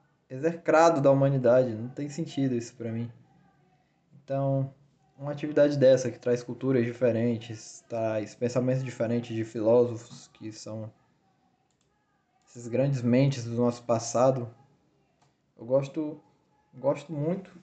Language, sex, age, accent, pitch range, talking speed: Portuguese, male, 20-39, Brazilian, 125-155 Hz, 115 wpm